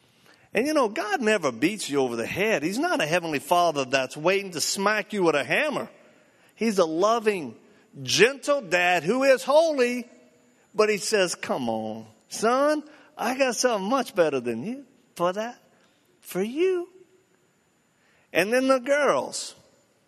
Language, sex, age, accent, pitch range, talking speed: English, male, 50-69, American, 180-275 Hz, 155 wpm